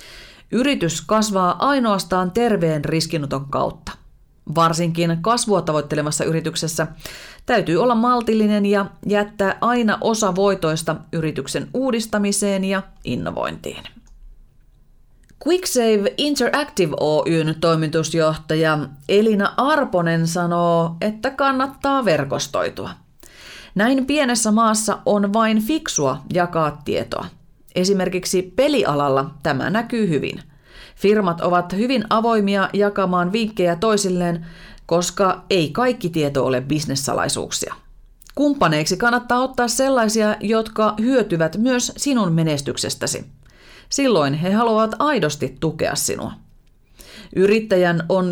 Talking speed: 90 wpm